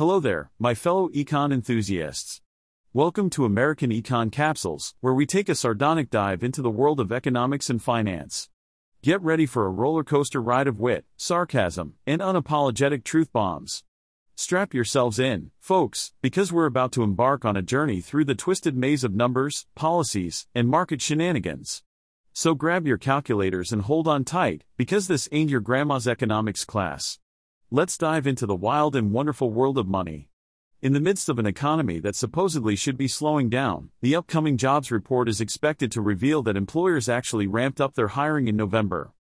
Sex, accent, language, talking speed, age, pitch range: male, American, English, 175 wpm, 40-59, 110-150 Hz